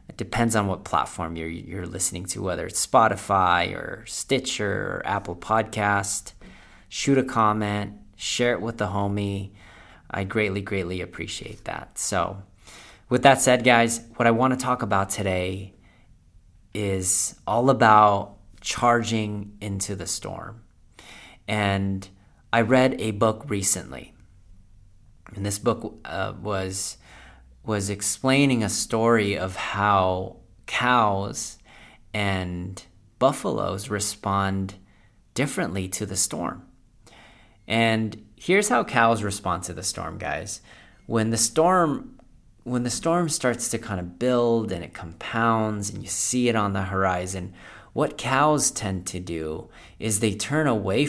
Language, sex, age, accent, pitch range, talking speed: English, male, 30-49, American, 95-115 Hz, 130 wpm